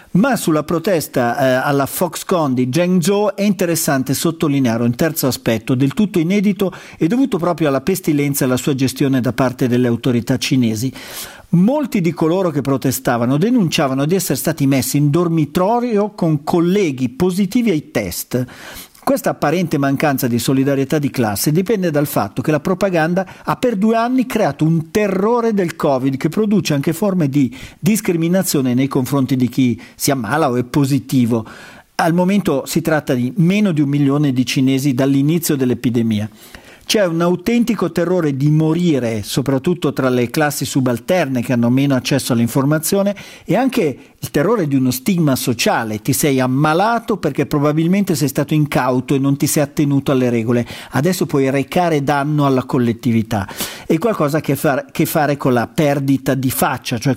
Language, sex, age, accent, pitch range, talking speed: Italian, male, 50-69, native, 130-175 Hz, 160 wpm